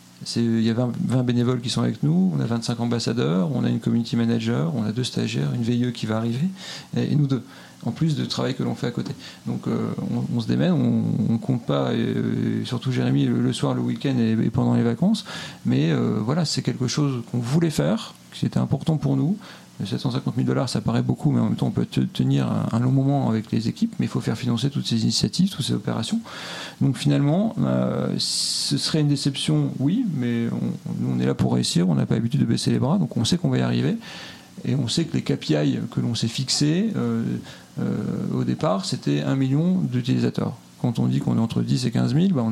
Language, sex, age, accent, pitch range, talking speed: French, male, 40-59, French, 90-150 Hz, 235 wpm